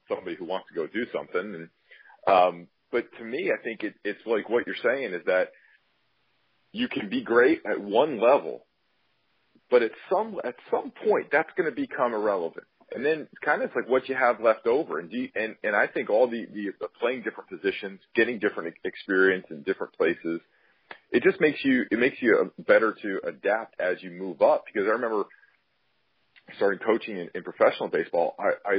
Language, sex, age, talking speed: English, male, 40-59, 190 wpm